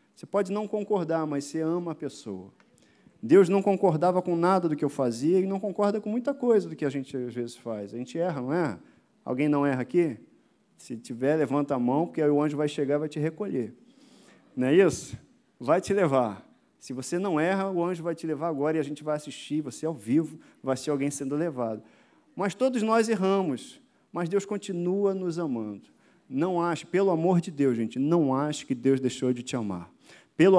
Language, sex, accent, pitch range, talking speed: Portuguese, male, Brazilian, 130-170 Hz, 215 wpm